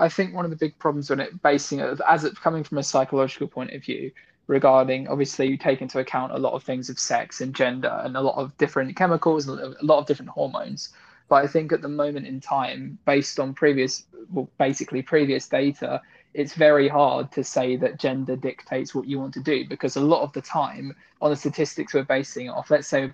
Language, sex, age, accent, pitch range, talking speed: English, male, 20-39, British, 130-150 Hz, 230 wpm